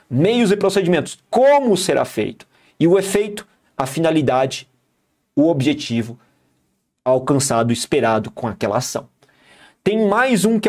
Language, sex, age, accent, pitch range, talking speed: Portuguese, male, 40-59, Brazilian, 145-205 Hz, 125 wpm